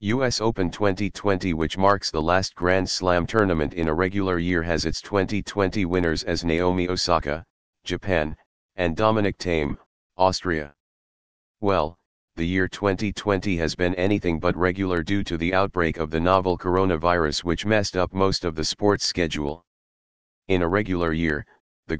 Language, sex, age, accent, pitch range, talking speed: English, male, 40-59, American, 80-100 Hz, 155 wpm